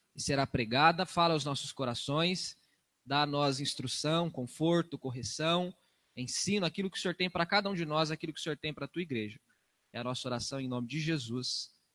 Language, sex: Portuguese, male